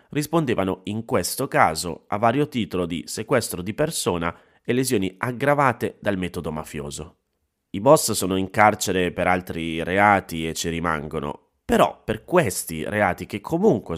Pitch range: 85-110 Hz